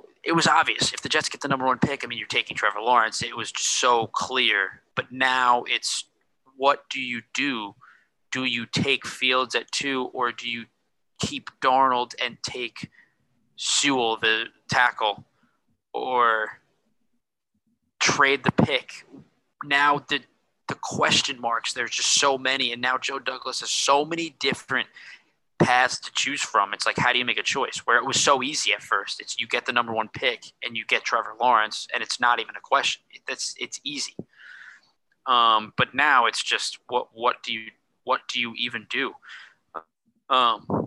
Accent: American